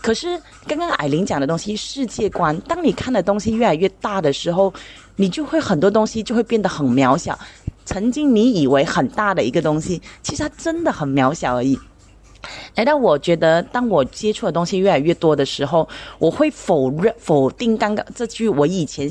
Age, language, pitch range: 20-39, Chinese, 150-235 Hz